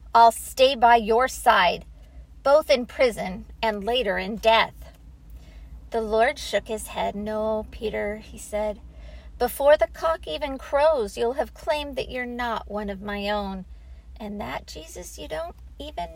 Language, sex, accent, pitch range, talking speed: English, female, American, 185-255 Hz, 155 wpm